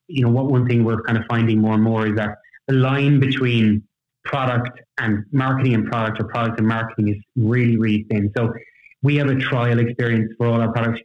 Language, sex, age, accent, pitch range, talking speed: English, male, 20-39, Irish, 110-130 Hz, 225 wpm